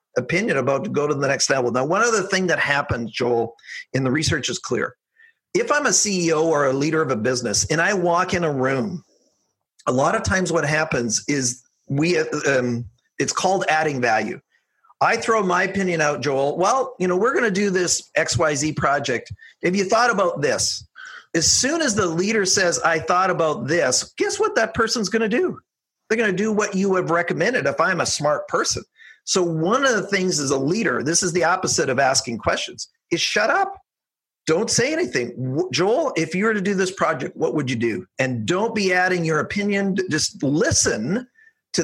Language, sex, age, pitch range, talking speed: English, male, 40-59, 145-200 Hz, 205 wpm